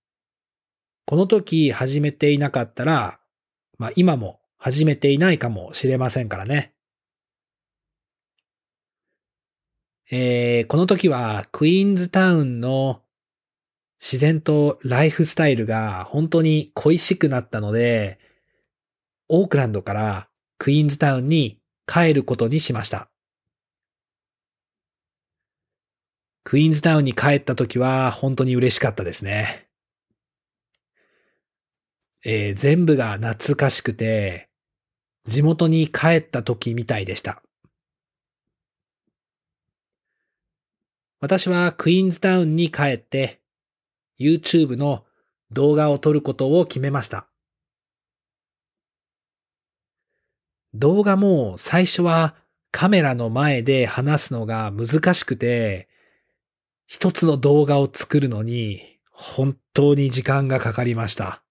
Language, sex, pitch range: English, male, 115-155 Hz